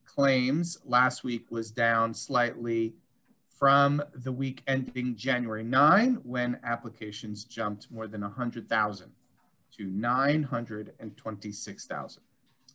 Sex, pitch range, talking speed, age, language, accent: male, 115-145 Hz, 95 wpm, 40-59, English, American